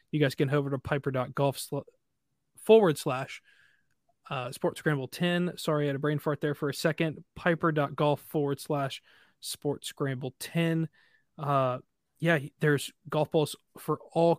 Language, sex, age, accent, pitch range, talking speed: English, male, 20-39, American, 140-160 Hz, 140 wpm